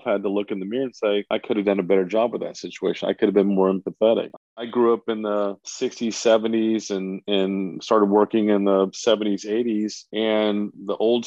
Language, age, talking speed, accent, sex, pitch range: English, 40-59, 225 wpm, American, male, 100-110 Hz